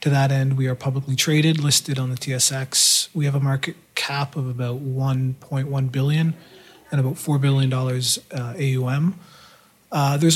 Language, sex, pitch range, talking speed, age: English, male, 135-160 Hz, 160 wpm, 30-49